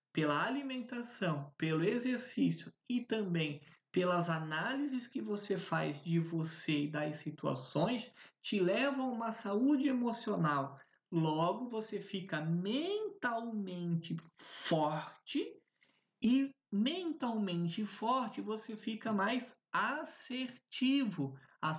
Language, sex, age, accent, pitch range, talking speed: Portuguese, male, 20-39, Brazilian, 165-245 Hz, 95 wpm